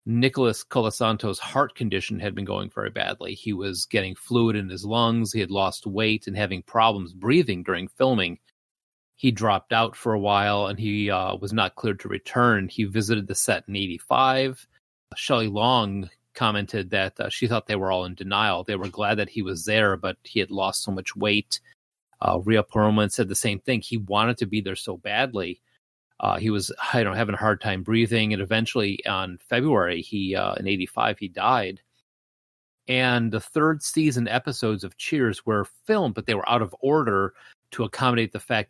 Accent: American